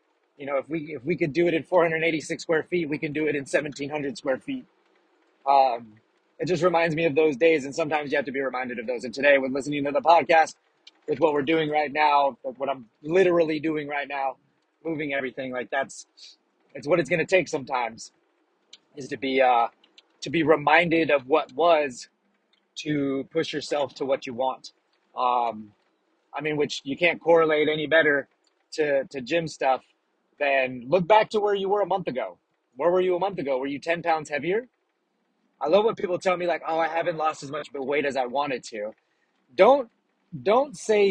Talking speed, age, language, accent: 210 wpm, 30-49, English, American